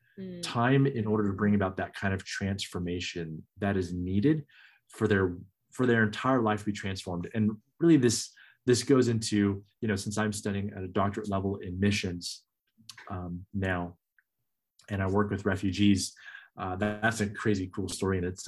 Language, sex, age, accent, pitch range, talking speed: English, male, 20-39, American, 95-115 Hz, 175 wpm